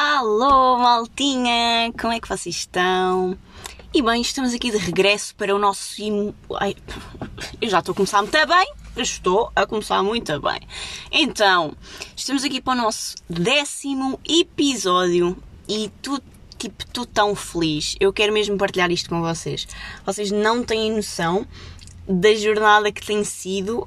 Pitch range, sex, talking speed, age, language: 185-230 Hz, female, 145 wpm, 20-39, Portuguese